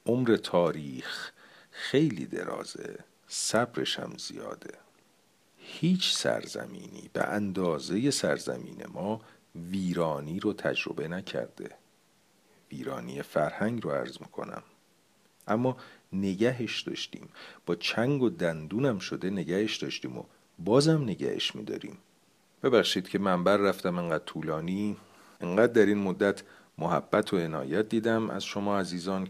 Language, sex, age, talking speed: Persian, male, 50-69, 110 wpm